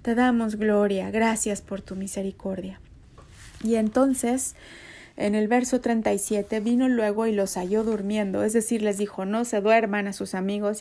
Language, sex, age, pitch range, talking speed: Spanish, female, 30-49, 200-230 Hz, 160 wpm